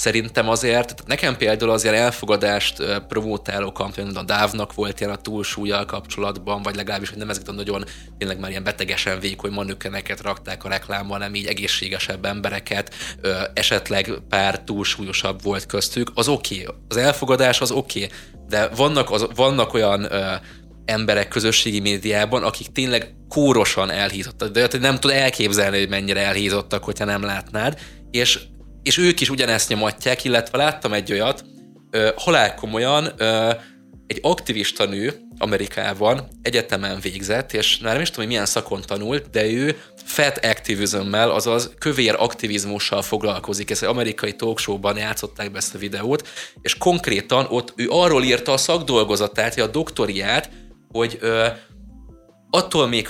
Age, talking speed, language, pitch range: 20-39, 145 wpm, Hungarian, 100-120 Hz